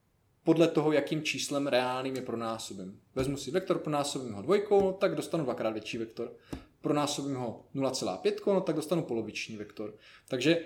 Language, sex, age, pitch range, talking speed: Czech, male, 20-39, 125-170 Hz, 160 wpm